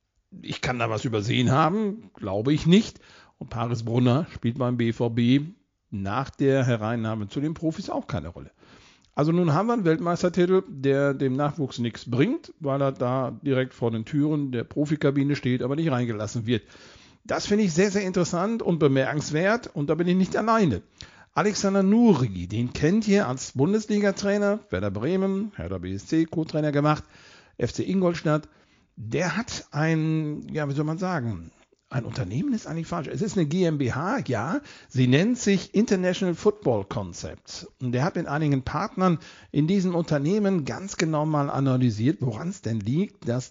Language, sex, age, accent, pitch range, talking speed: German, male, 50-69, German, 125-180 Hz, 165 wpm